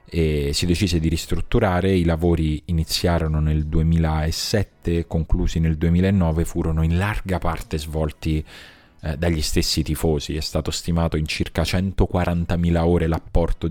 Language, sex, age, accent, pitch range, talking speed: Italian, male, 30-49, native, 80-95 Hz, 130 wpm